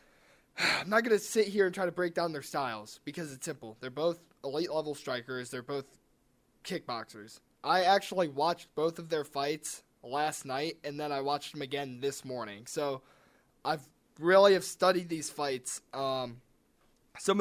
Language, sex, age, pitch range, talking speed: English, male, 20-39, 130-170 Hz, 175 wpm